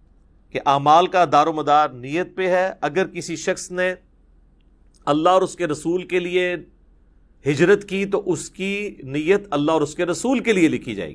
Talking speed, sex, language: 190 wpm, male, Urdu